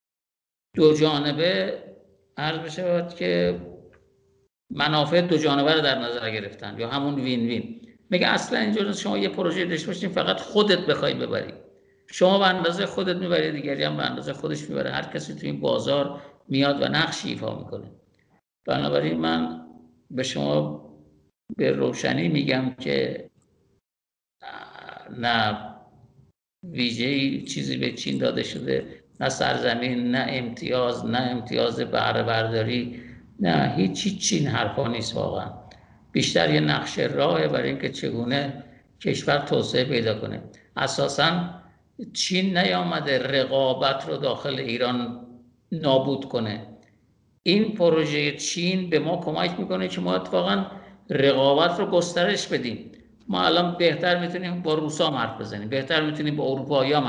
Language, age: Persian, 50-69